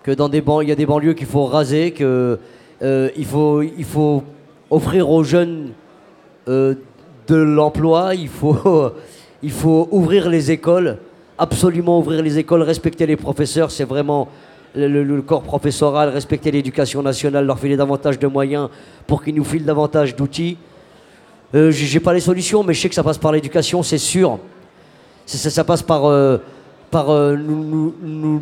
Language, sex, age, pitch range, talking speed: French, male, 40-59, 145-170 Hz, 180 wpm